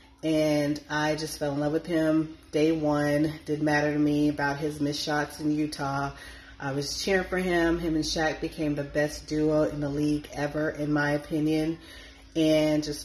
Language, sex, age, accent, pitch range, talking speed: English, female, 30-49, American, 145-160 Hz, 190 wpm